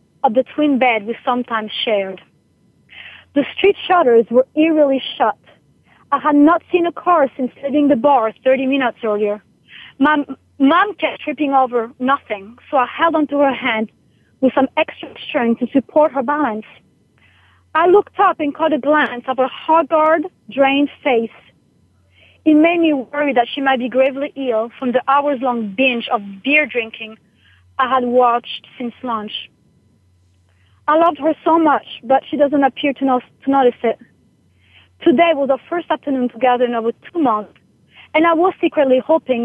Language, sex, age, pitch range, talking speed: English, female, 30-49, 230-295 Hz, 165 wpm